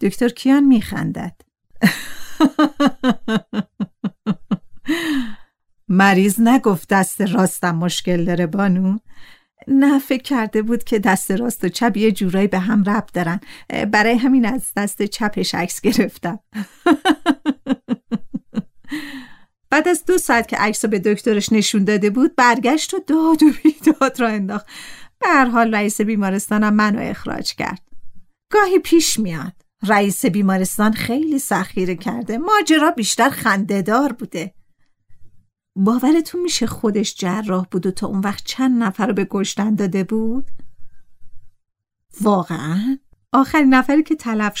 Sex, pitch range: female, 200-265 Hz